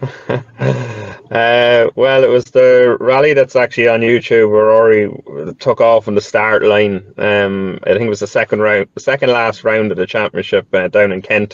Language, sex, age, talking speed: English, male, 30-49, 190 wpm